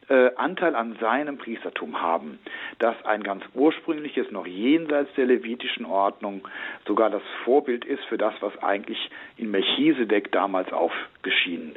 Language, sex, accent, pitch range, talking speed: German, male, German, 120-160 Hz, 135 wpm